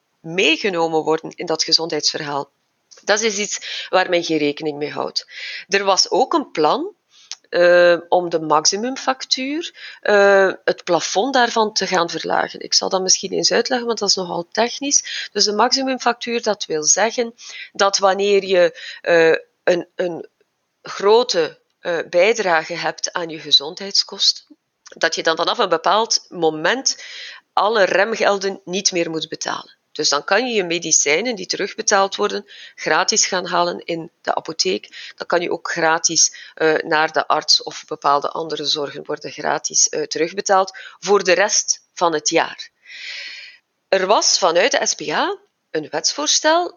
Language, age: Dutch, 30-49